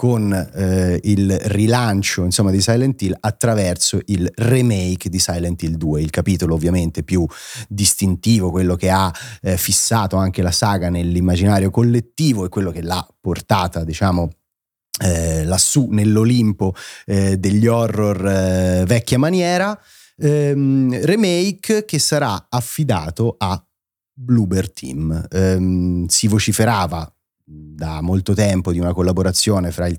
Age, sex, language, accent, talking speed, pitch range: 30-49, male, Italian, native, 130 wpm, 90-115 Hz